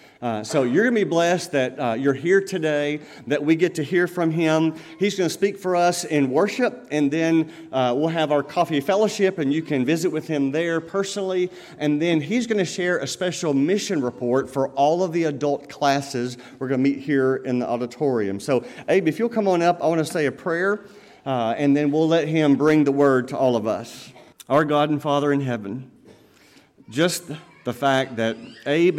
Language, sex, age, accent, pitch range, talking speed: English, male, 40-59, American, 130-160 Hz, 215 wpm